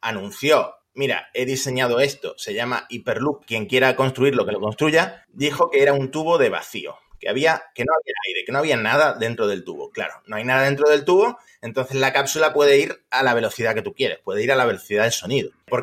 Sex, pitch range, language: male, 125-155 Hz, Spanish